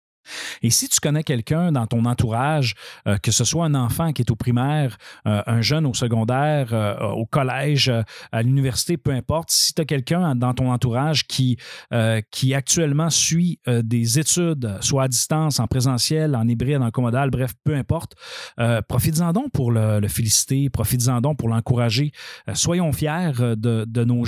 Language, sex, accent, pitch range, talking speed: French, male, Canadian, 115-145 Hz, 185 wpm